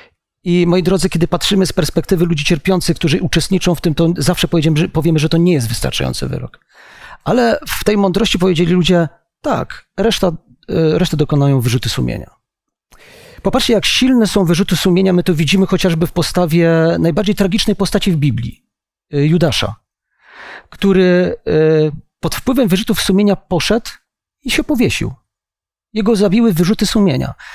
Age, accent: 40-59, native